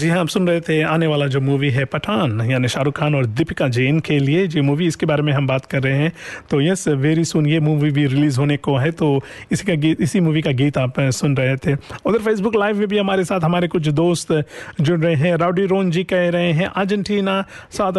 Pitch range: 150-190 Hz